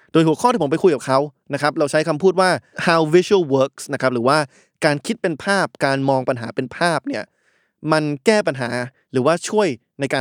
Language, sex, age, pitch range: Thai, male, 20-39, 130-160 Hz